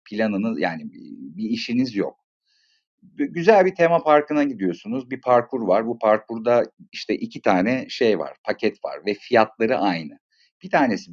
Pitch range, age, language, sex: 115-170 Hz, 50-69, Turkish, male